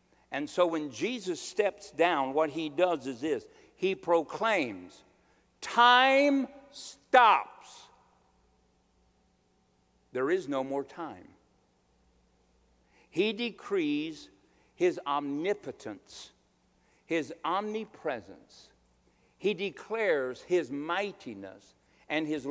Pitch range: 130-220 Hz